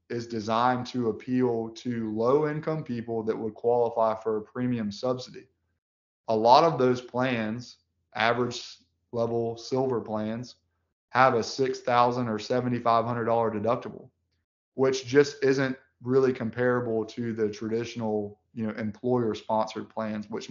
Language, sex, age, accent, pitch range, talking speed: English, male, 20-39, American, 110-130 Hz, 130 wpm